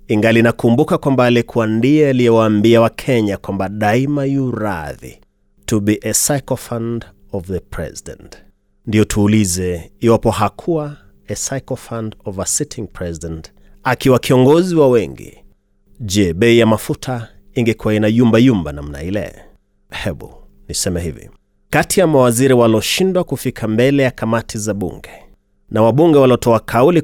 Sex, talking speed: male, 135 wpm